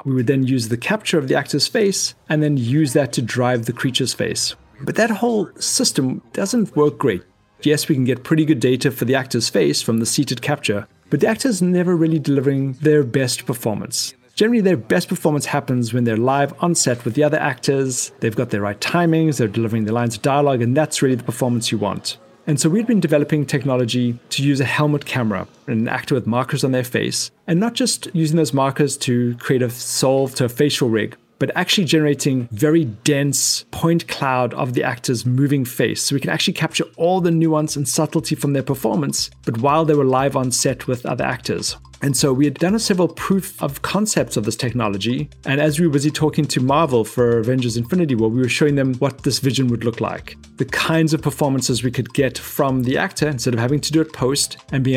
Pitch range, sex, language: 125-155 Hz, male, English